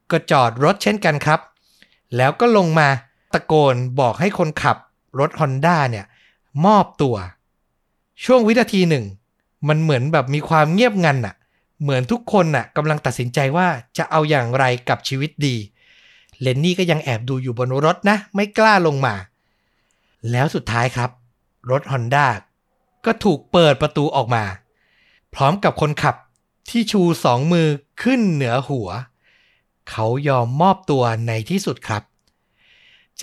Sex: male